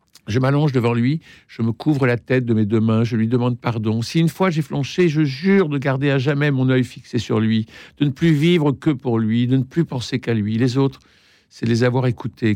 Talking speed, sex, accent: 250 wpm, male, French